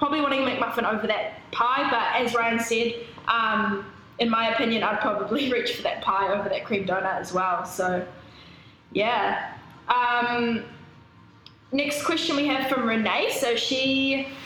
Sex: female